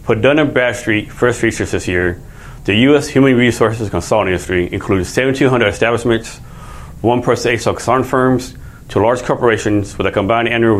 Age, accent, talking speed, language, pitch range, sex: 30-49, American, 155 wpm, English, 105-130 Hz, male